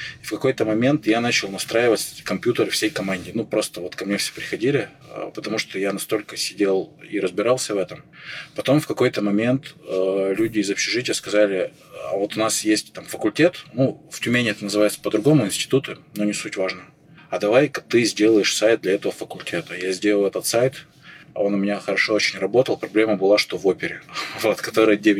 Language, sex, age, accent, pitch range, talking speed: Russian, male, 20-39, native, 100-120 Hz, 190 wpm